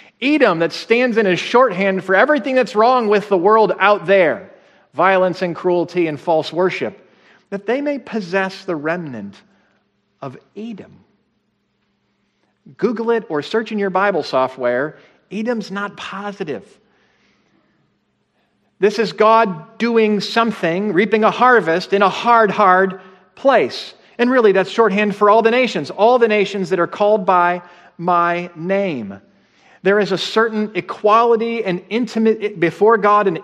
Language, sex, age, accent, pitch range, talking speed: English, male, 40-59, American, 180-220 Hz, 145 wpm